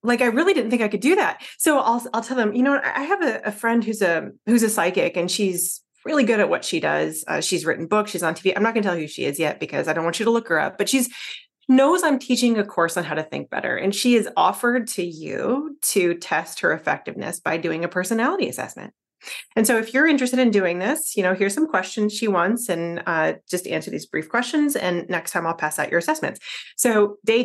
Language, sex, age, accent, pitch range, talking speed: English, female, 30-49, American, 180-245 Hz, 260 wpm